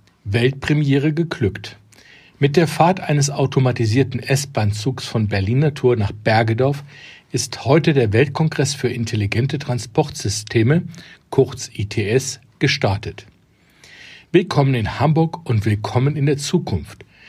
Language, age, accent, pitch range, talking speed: German, 50-69, German, 110-145 Hz, 110 wpm